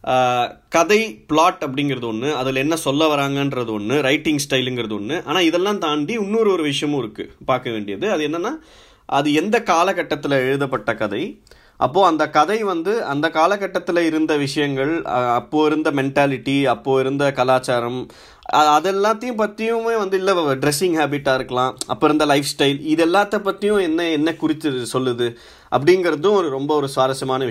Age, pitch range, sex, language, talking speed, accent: 20-39, 135-175 Hz, male, Tamil, 140 wpm, native